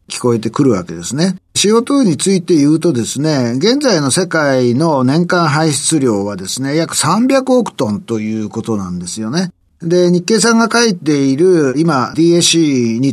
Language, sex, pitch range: Japanese, male, 125-185 Hz